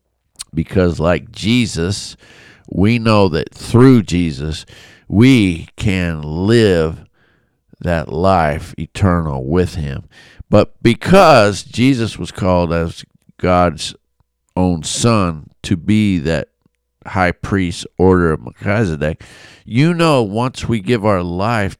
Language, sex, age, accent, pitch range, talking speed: English, male, 50-69, American, 80-105 Hz, 110 wpm